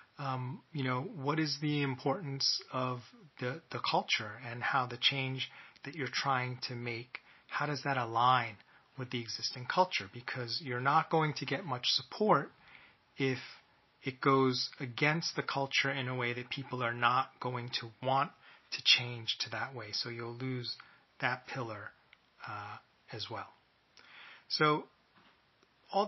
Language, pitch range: English, 125-140 Hz